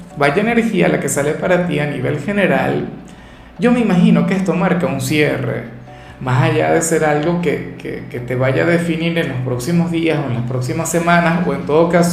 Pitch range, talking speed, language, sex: 135-165 Hz, 215 wpm, Spanish, male